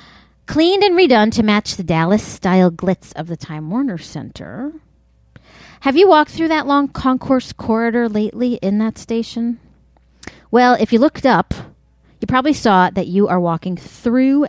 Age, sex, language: 40-59, female, English